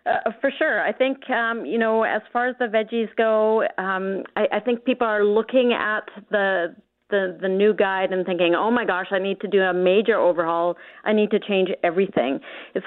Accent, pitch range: American, 185-230 Hz